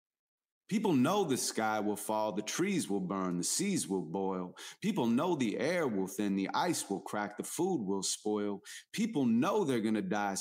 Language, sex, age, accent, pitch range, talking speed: English, male, 30-49, American, 120-185 Hz, 190 wpm